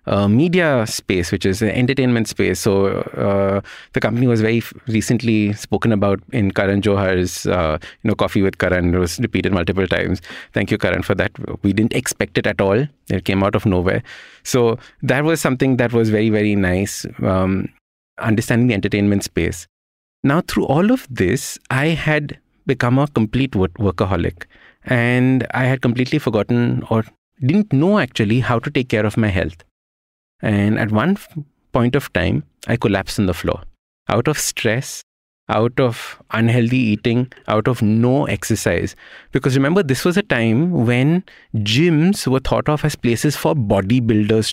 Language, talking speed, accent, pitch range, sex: English, 165 wpm, Indian, 100-130 Hz, male